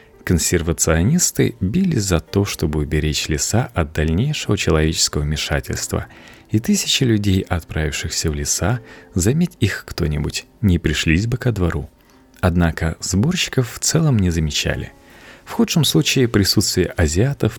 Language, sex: Russian, male